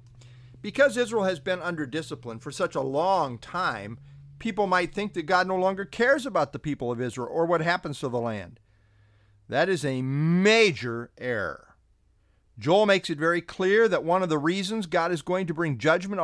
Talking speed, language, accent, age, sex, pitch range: 190 wpm, English, American, 50-69, male, 130-200 Hz